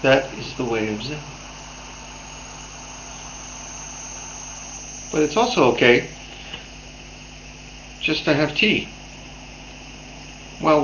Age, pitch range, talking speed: 50-69, 120-155 Hz, 85 wpm